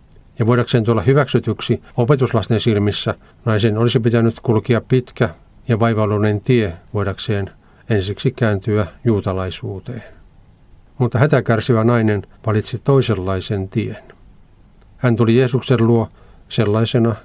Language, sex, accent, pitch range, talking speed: Finnish, male, native, 100-120 Hz, 100 wpm